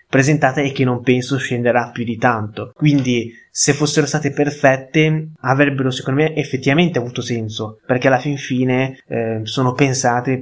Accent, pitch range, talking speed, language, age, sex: native, 120-135 Hz, 155 wpm, Italian, 20-39, male